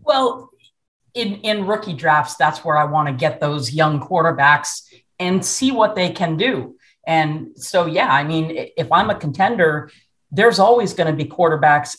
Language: English